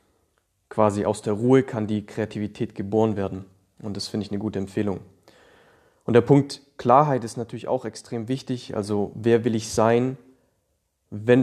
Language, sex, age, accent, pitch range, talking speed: German, male, 30-49, German, 105-120 Hz, 165 wpm